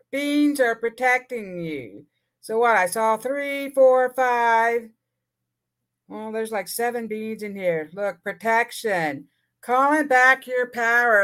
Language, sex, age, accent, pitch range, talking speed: English, female, 50-69, American, 190-255 Hz, 130 wpm